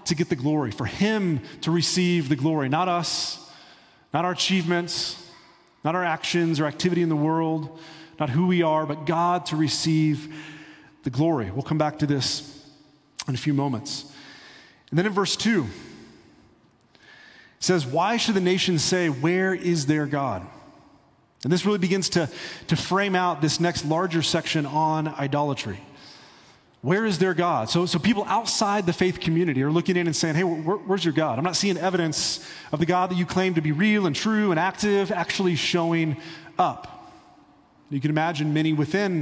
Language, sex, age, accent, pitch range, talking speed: English, male, 30-49, American, 150-180 Hz, 180 wpm